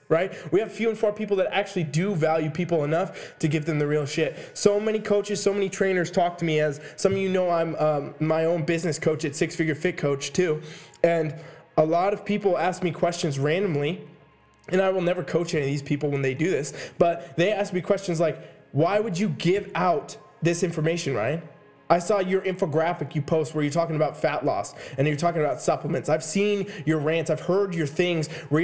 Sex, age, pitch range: male, 20-39, 155-195 Hz